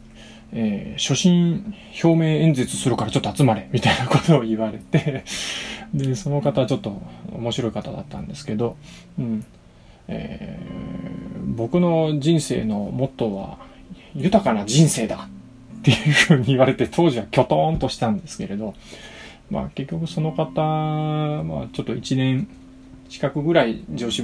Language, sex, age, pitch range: Japanese, male, 20-39, 115-165 Hz